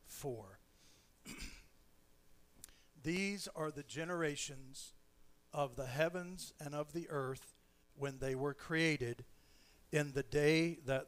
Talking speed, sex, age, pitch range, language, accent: 105 wpm, male, 50-69, 125-150 Hz, English, American